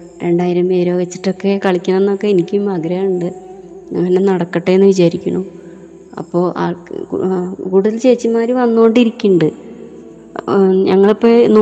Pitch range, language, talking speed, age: 185-200 Hz, Malayalam, 90 wpm, 20-39